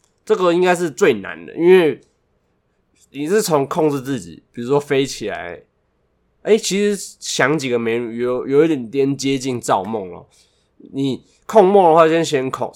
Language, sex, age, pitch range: Chinese, male, 20-39, 120-160 Hz